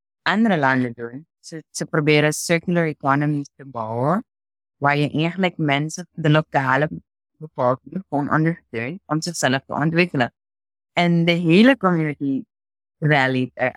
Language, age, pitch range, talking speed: Dutch, 20-39, 135-170 Hz, 120 wpm